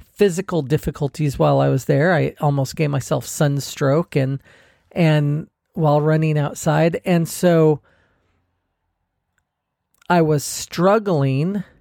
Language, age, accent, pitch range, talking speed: English, 40-59, American, 145-175 Hz, 105 wpm